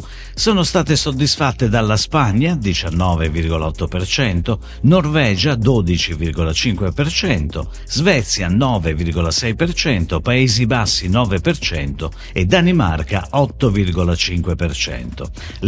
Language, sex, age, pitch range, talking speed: Italian, male, 50-69, 90-145 Hz, 60 wpm